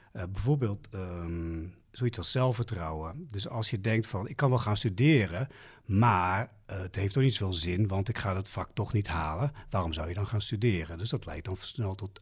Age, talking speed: 40-59, 215 wpm